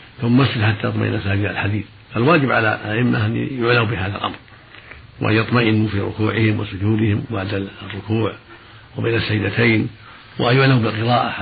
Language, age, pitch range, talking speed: Arabic, 70-89, 105-120 Hz, 130 wpm